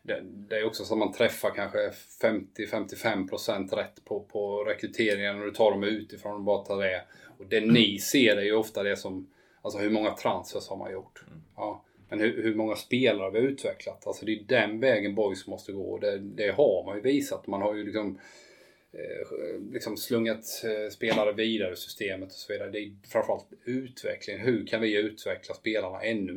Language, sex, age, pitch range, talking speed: Swedish, male, 20-39, 100-115 Hz, 190 wpm